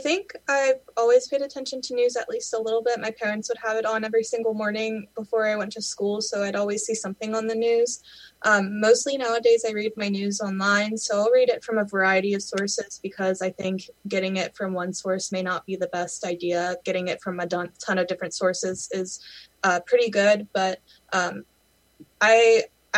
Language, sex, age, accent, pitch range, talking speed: English, female, 20-39, American, 180-210 Hz, 210 wpm